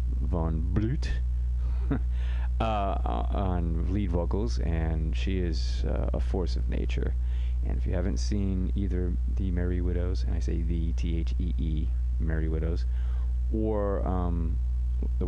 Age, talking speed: 30-49, 140 wpm